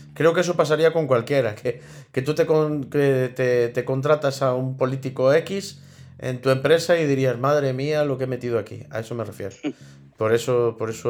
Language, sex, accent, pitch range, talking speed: Spanish, male, Spanish, 115-155 Hz, 210 wpm